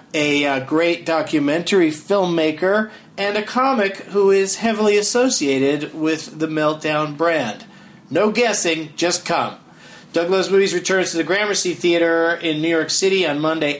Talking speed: 150 wpm